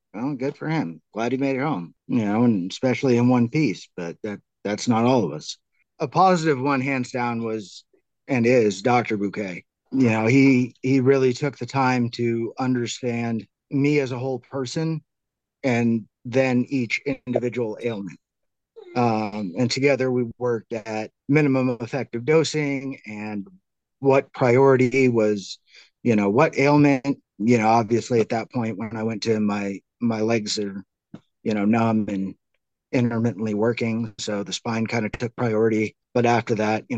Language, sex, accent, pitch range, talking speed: English, male, American, 110-130 Hz, 160 wpm